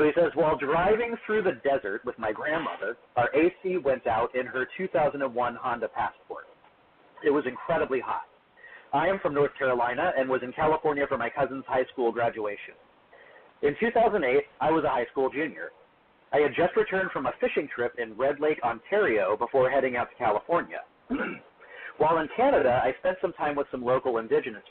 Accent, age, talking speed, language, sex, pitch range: American, 40-59, 180 wpm, English, male, 135-200 Hz